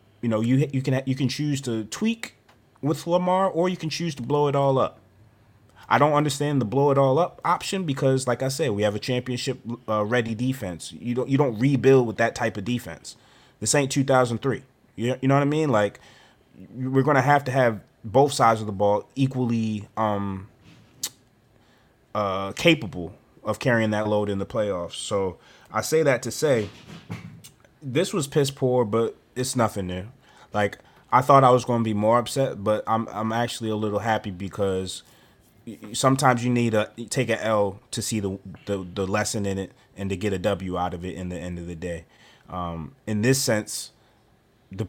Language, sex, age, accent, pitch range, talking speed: English, male, 30-49, American, 105-130 Hz, 200 wpm